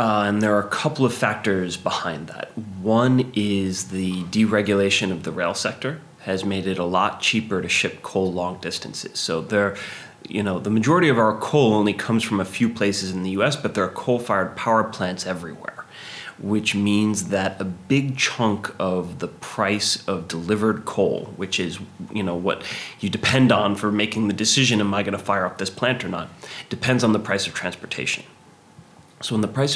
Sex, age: male, 30-49